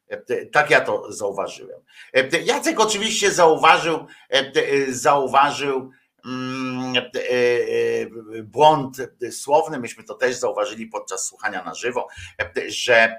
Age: 50-69